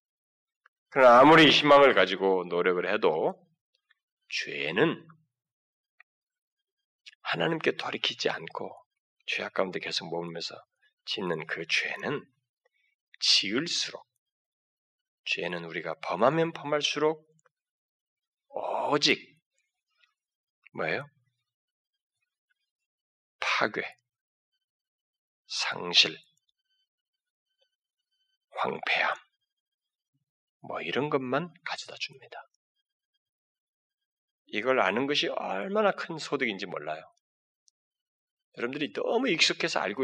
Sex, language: male, Korean